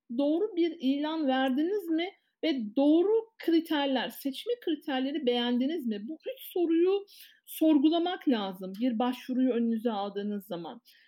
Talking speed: 120 wpm